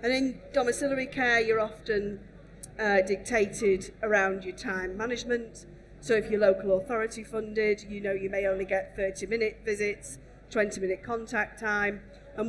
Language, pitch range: English, 195-225 Hz